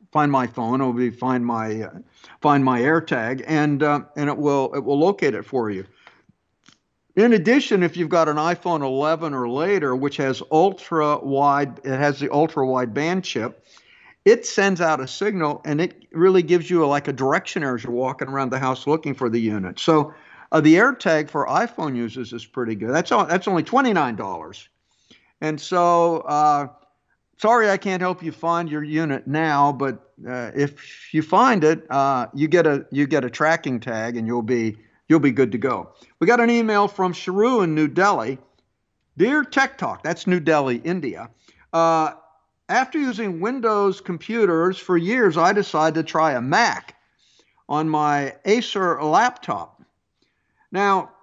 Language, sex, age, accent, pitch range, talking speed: English, male, 50-69, American, 135-180 Hz, 180 wpm